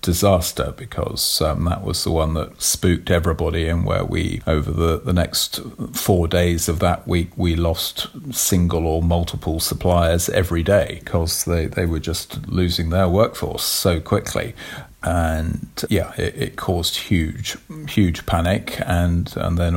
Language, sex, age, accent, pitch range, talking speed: English, male, 40-59, British, 85-100 Hz, 155 wpm